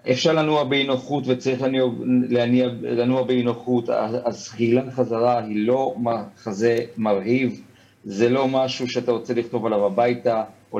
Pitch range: 115-135 Hz